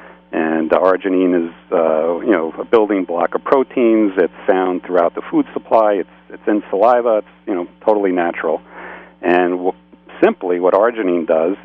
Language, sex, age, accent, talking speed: English, male, 50-69, American, 170 wpm